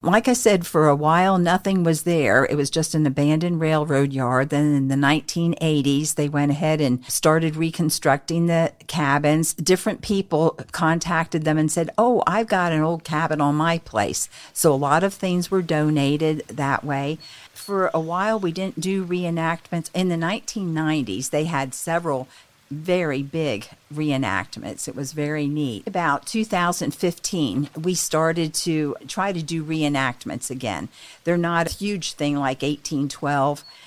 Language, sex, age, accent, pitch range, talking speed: English, female, 50-69, American, 145-170 Hz, 160 wpm